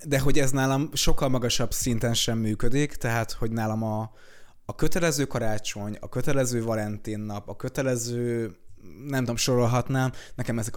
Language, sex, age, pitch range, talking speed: Hungarian, male, 20-39, 105-135 Hz, 145 wpm